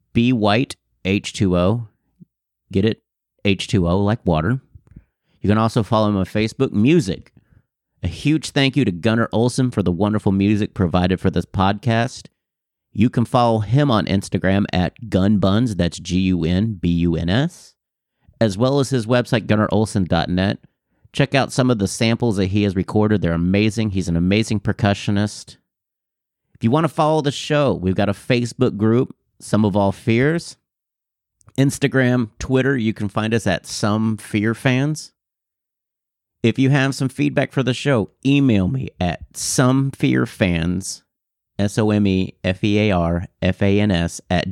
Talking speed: 150 wpm